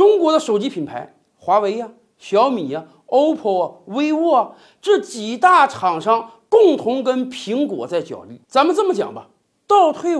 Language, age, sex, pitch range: Chinese, 50-69, male, 225-355 Hz